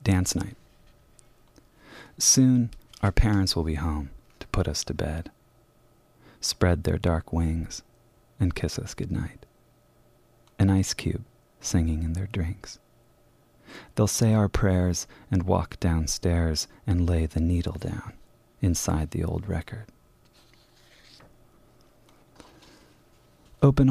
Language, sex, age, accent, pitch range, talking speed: English, male, 30-49, American, 85-115 Hz, 115 wpm